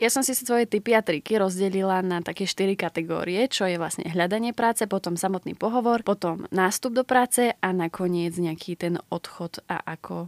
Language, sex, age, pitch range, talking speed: Slovak, female, 20-39, 180-210 Hz, 180 wpm